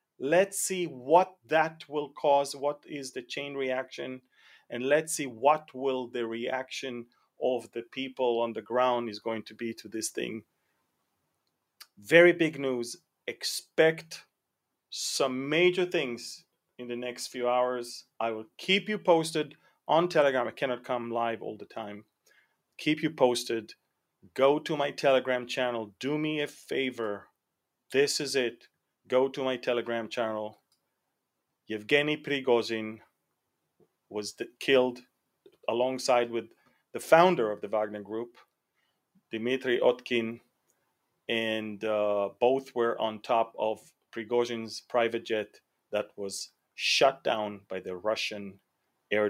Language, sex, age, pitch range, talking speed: English, male, 30-49, 115-145 Hz, 135 wpm